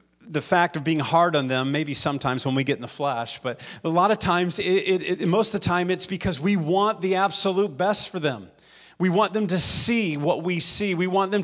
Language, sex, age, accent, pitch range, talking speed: English, male, 40-59, American, 130-165 Hz, 230 wpm